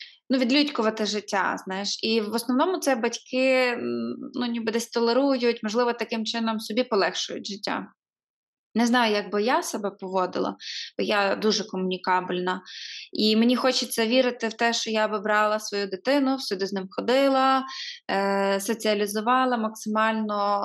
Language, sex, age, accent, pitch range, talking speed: Ukrainian, female, 20-39, native, 205-245 Hz, 140 wpm